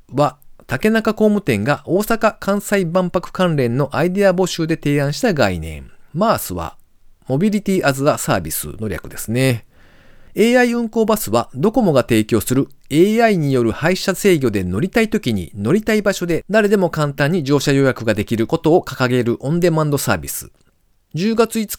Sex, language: male, Japanese